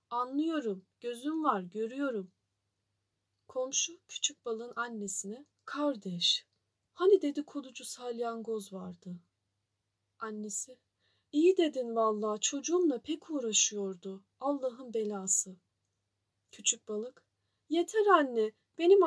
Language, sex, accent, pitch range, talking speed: Turkish, female, native, 180-290 Hz, 85 wpm